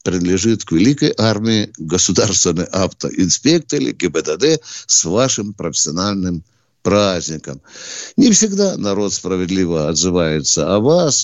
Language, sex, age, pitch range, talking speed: Russian, male, 60-79, 95-145 Hz, 95 wpm